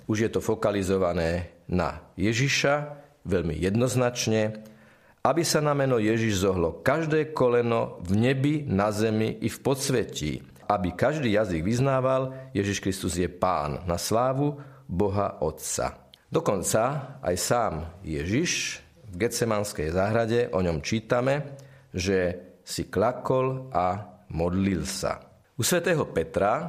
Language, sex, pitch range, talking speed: Slovak, male, 90-130 Hz, 120 wpm